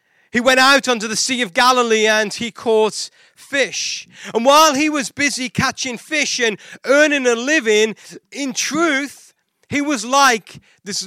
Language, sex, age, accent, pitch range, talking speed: English, male, 30-49, British, 200-270 Hz, 155 wpm